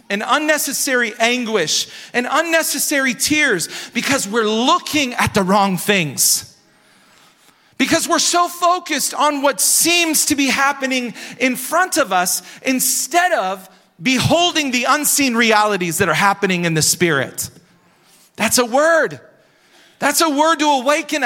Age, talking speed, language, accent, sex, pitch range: 40-59, 135 wpm, English, American, male, 205-295 Hz